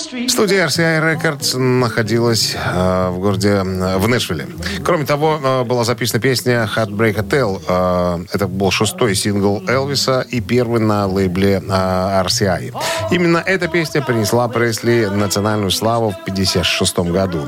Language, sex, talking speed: Russian, male, 135 wpm